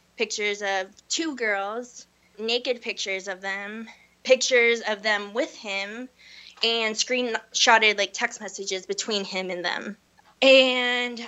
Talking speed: 120 wpm